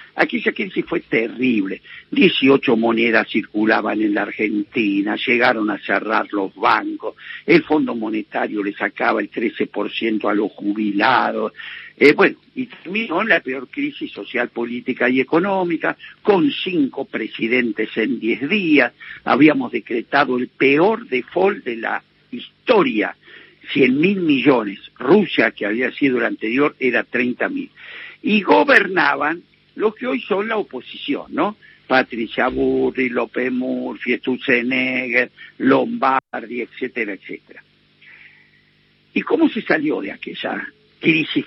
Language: Spanish